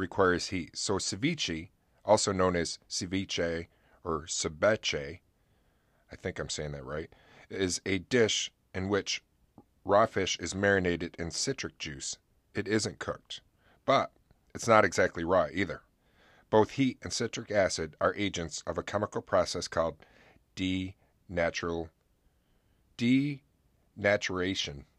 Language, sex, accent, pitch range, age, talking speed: English, male, American, 85-110 Hz, 40-59, 120 wpm